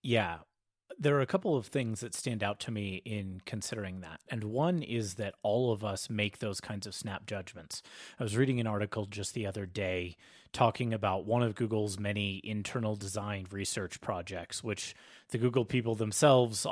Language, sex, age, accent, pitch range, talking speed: English, male, 30-49, American, 105-130 Hz, 185 wpm